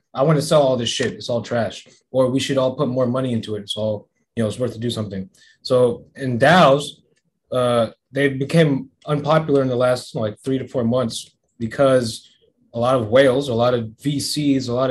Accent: American